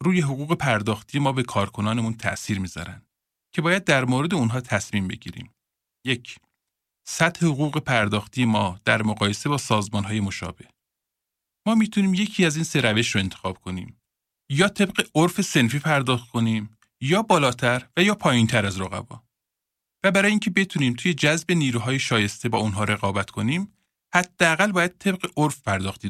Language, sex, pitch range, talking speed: Persian, male, 105-160 Hz, 150 wpm